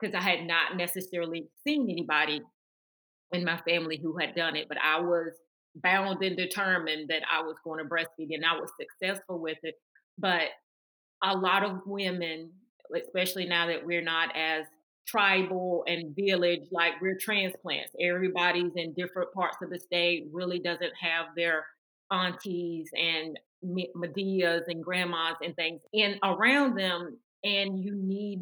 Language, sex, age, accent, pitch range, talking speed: English, female, 30-49, American, 165-185 Hz, 155 wpm